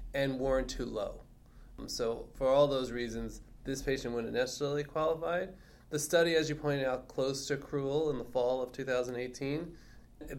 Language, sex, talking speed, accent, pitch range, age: English, male, 160 wpm, American, 115-140 Hz, 20-39